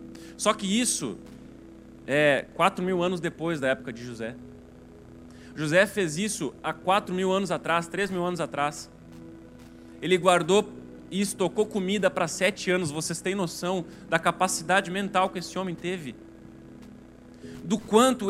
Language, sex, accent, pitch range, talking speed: Portuguese, male, Brazilian, 130-205 Hz, 145 wpm